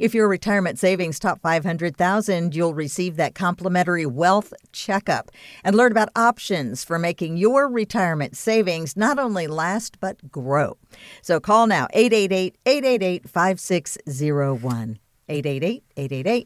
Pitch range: 150-215 Hz